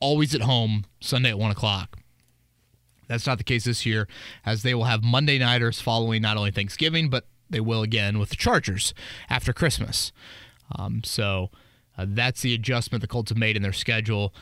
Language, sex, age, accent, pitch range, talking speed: English, male, 30-49, American, 105-125 Hz, 185 wpm